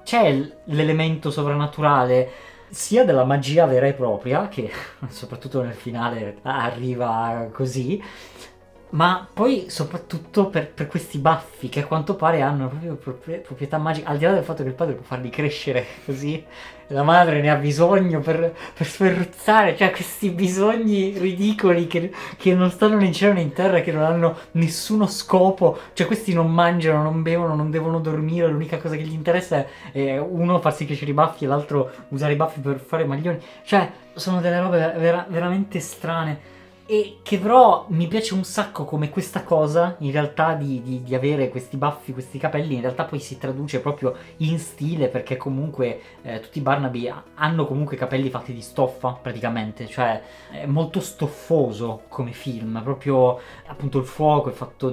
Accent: native